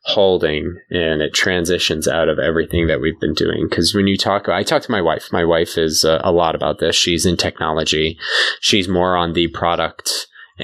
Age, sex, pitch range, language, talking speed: 20-39, male, 85-105 Hz, English, 215 wpm